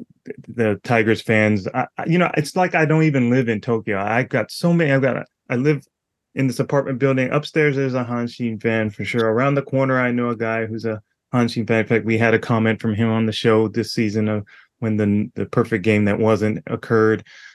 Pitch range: 110-125 Hz